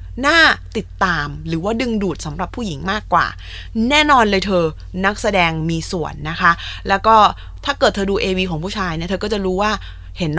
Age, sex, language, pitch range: 20-39, female, Thai, 170-235 Hz